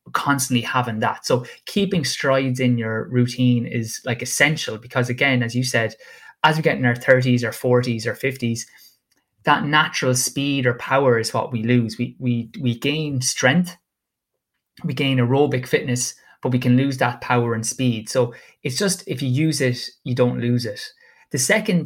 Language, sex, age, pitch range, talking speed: English, male, 20-39, 120-135 Hz, 180 wpm